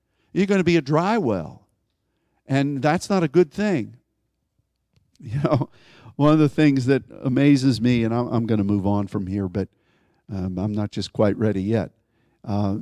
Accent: American